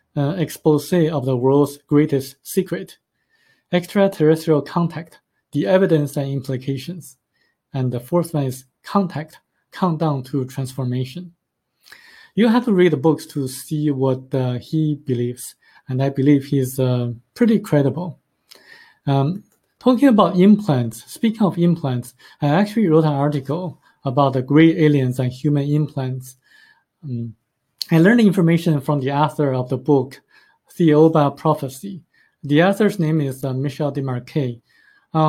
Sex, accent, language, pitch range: male, Japanese, Chinese, 135-170 Hz